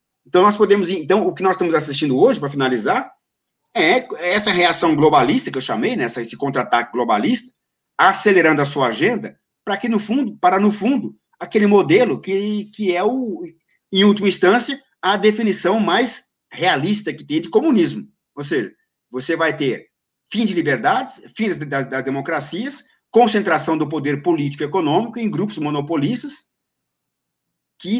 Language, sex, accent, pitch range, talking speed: Portuguese, male, Brazilian, 155-220 Hz, 155 wpm